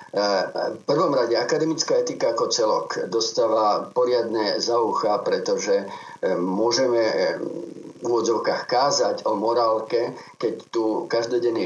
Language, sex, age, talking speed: Slovak, male, 50-69, 105 wpm